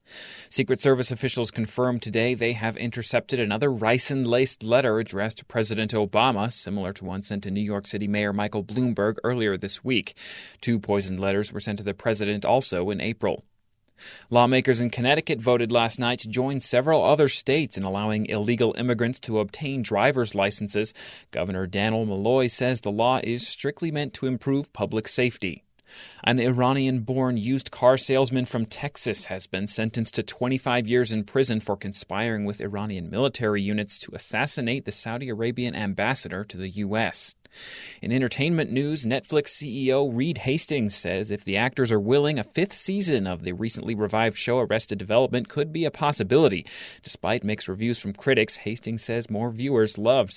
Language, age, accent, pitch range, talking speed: English, 30-49, American, 105-130 Hz, 165 wpm